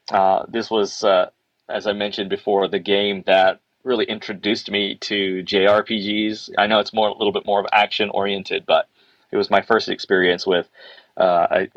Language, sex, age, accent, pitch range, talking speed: English, male, 30-49, American, 100-130 Hz, 180 wpm